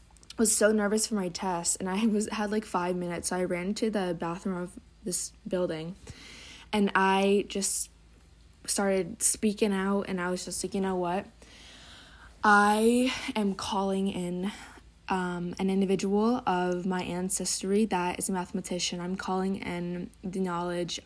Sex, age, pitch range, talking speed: female, 20-39, 180-205 Hz, 155 wpm